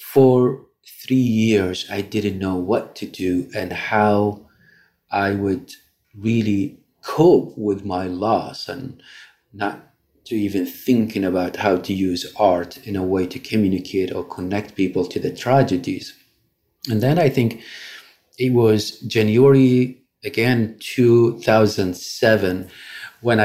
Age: 40-59